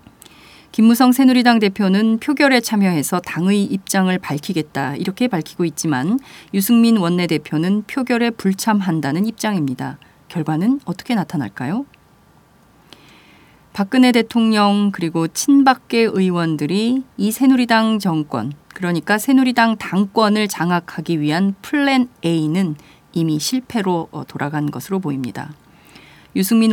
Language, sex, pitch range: Korean, female, 160-230 Hz